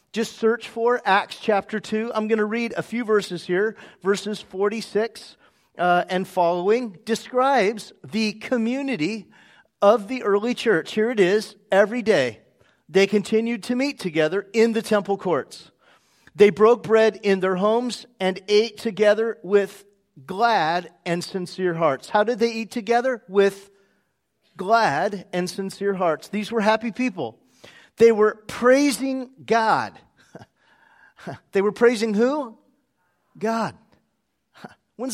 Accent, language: American, English